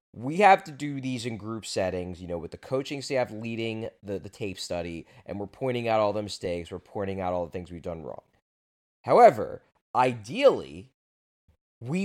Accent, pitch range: American, 100-145 Hz